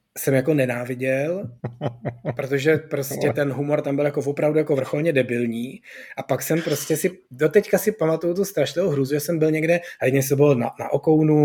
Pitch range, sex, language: 135-175 Hz, male, Czech